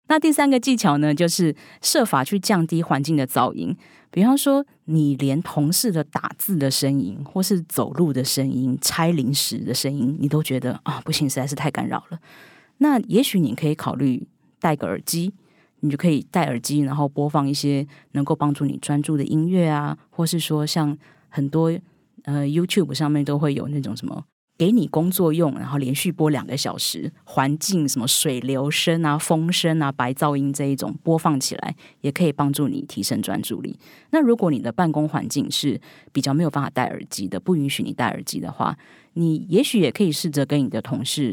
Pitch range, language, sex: 140-170 Hz, Chinese, female